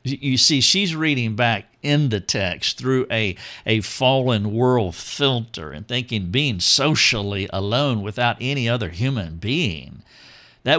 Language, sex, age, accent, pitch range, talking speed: English, male, 50-69, American, 110-140 Hz, 140 wpm